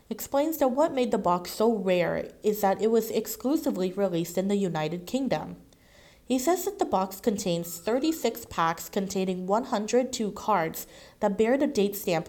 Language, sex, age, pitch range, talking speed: English, female, 30-49, 170-230 Hz, 165 wpm